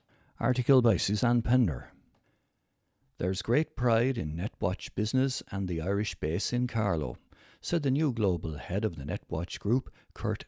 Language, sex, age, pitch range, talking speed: English, male, 60-79, 85-120 Hz, 150 wpm